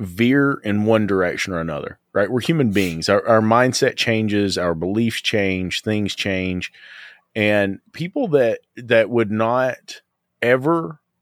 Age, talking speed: 30-49, 140 wpm